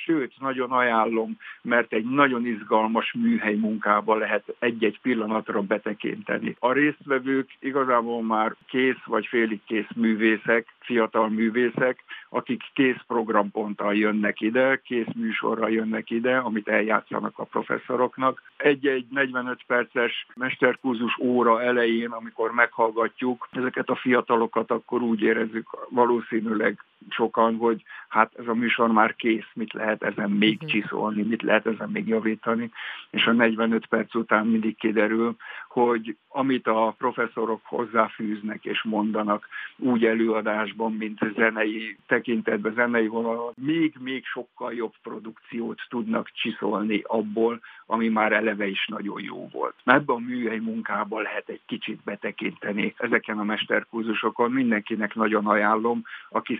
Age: 60-79